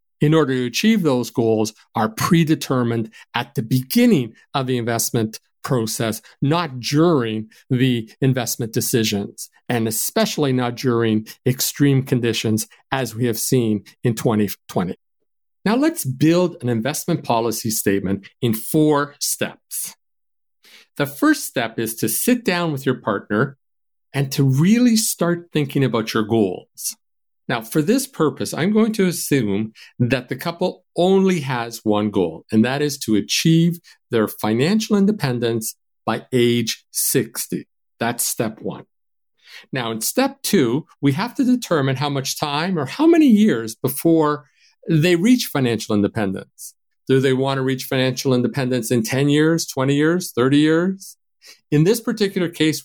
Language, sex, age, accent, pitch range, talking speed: English, male, 50-69, American, 115-170 Hz, 145 wpm